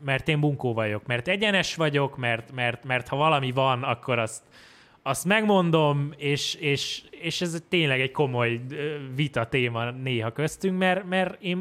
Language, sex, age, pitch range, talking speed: Hungarian, male, 20-39, 125-180 Hz, 160 wpm